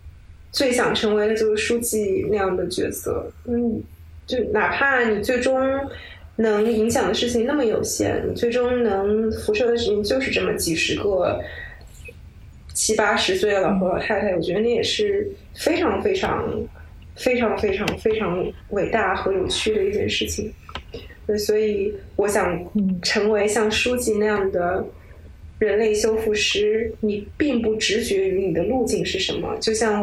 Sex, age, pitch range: female, 20-39, 205-280 Hz